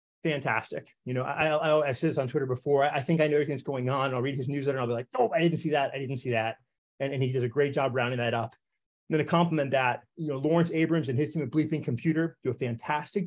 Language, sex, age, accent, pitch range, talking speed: English, male, 30-49, American, 125-150 Hz, 295 wpm